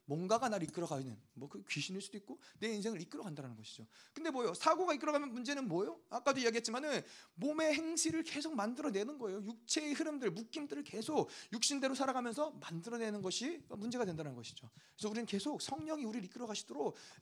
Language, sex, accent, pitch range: Korean, male, native, 185-255 Hz